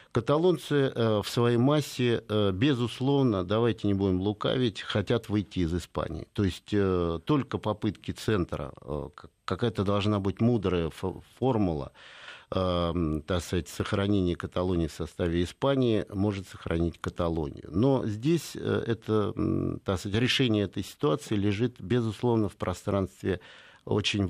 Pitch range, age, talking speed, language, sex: 90-120 Hz, 50-69, 100 wpm, Russian, male